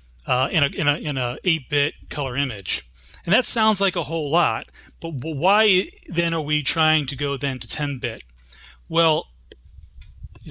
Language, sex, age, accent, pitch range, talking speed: English, male, 30-49, American, 120-165 Hz, 175 wpm